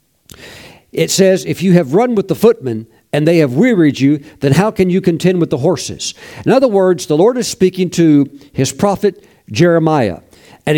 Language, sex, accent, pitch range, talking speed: English, male, American, 140-185 Hz, 190 wpm